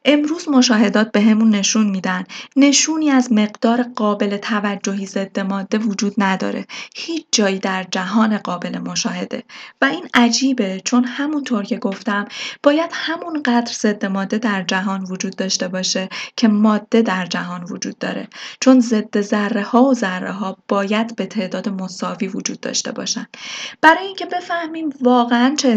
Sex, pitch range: female, 200-255 Hz